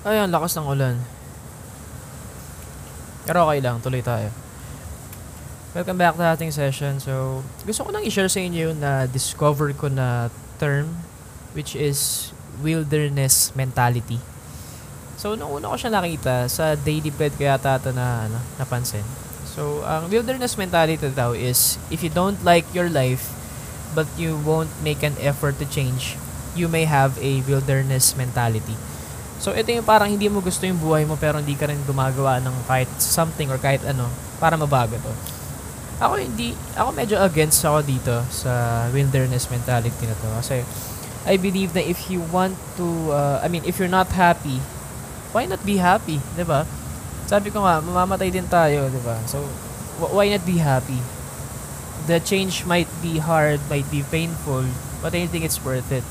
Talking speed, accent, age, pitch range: 165 wpm, native, 20-39, 130-170 Hz